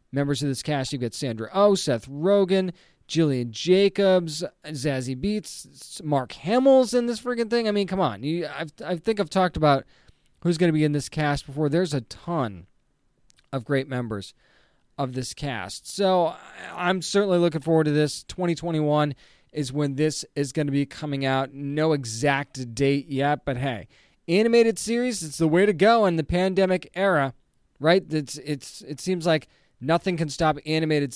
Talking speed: 175 wpm